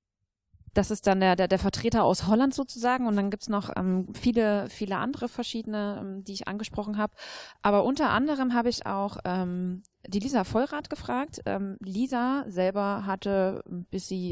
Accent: German